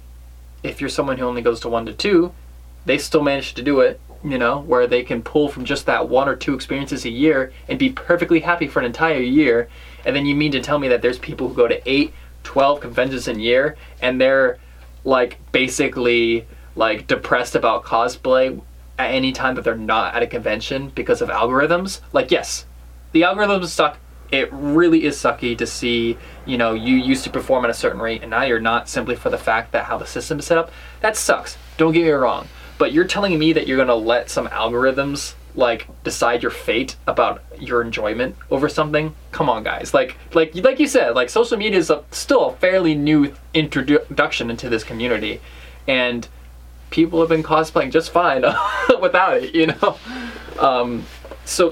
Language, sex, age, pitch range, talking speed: English, male, 20-39, 115-165 Hz, 200 wpm